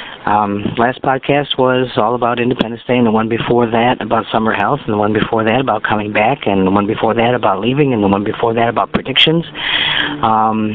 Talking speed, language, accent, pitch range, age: 220 wpm, English, American, 105-125 Hz, 50-69